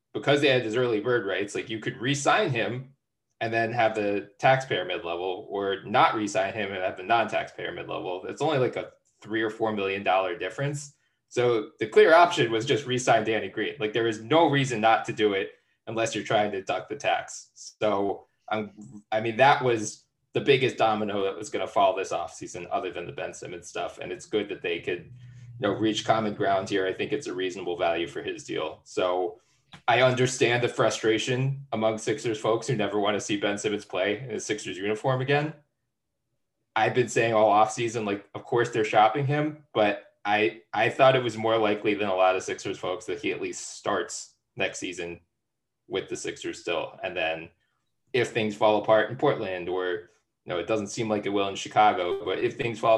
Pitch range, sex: 105-140 Hz, male